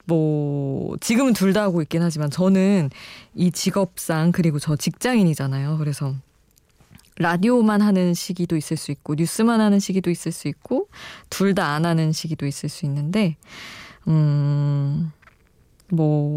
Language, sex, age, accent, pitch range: Korean, female, 20-39, native, 150-200 Hz